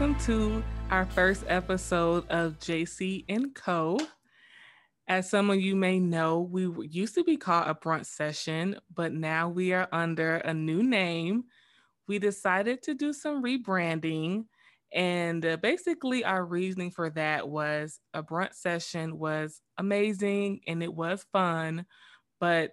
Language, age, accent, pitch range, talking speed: English, 20-39, American, 160-200 Hz, 145 wpm